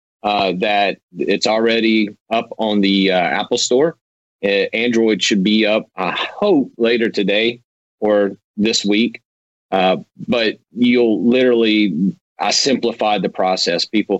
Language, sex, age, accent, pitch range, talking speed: English, male, 40-59, American, 95-110 Hz, 130 wpm